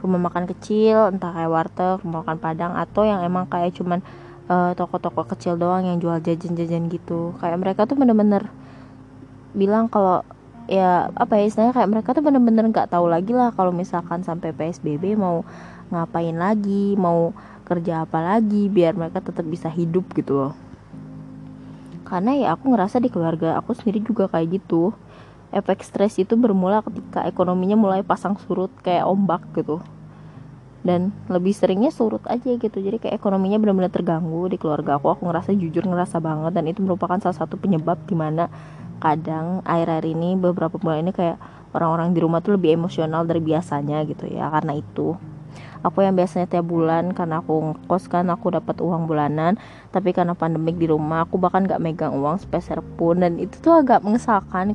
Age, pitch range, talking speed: 20-39, 165-195 Hz, 170 wpm